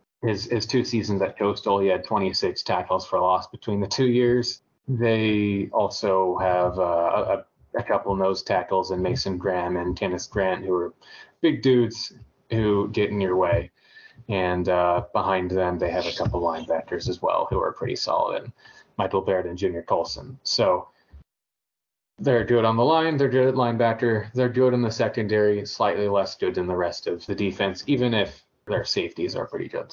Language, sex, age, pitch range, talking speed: English, male, 30-49, 95-120 Hz, 185 wpm